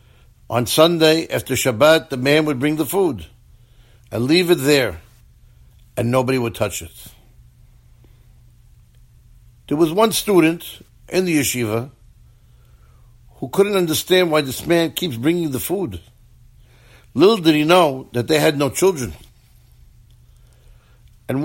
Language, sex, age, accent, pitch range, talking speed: English, male, 60-79, American, 120-165 Hz, 130 wpm